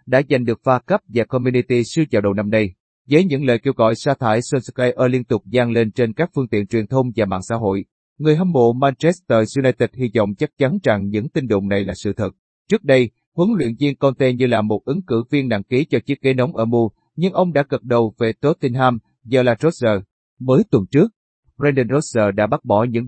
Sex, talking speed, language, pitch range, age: male, 235 wpm, Vietnamese, 110-140 Hz, 30-49